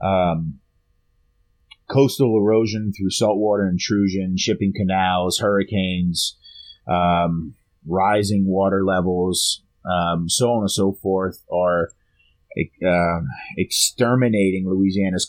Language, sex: English, male